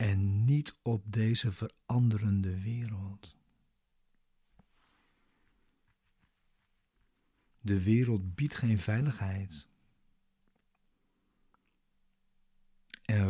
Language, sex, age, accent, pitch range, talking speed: Dutch, male, 50-69, Dutch, 95-115 Hz, 55 wpm